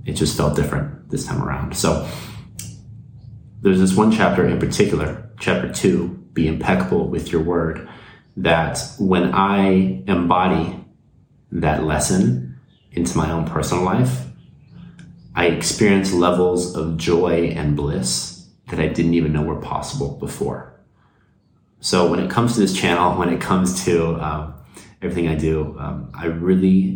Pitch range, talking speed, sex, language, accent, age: 75-90 Hz, 145 wpm, male, English, American, 30-49